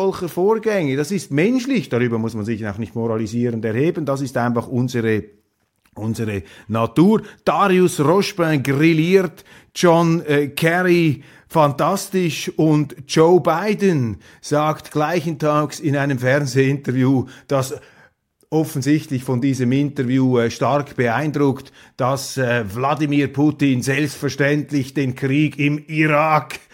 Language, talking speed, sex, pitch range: German, 115 wpm, male, 125-155 Hz